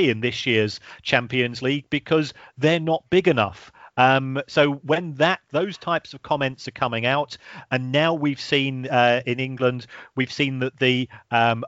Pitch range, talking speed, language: 120-140 Hz, 170 wpm, English